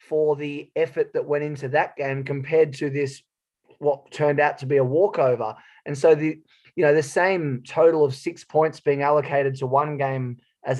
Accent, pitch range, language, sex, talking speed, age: Australian, 135-155 Hz, English, male, 195 wpm, 20-39